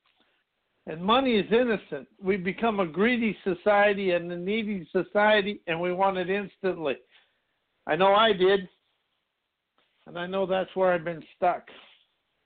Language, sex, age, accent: English, male, 60-79, American